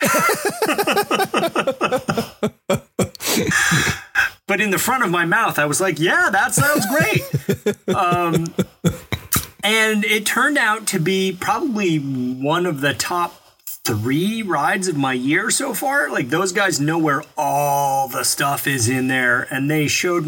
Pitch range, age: 130-175 Hz, 30-49